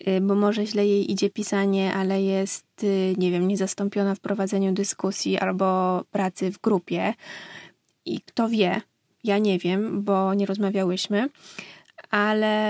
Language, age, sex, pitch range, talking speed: Polish, 20-39, female, 195-220 Hz, 130 wpm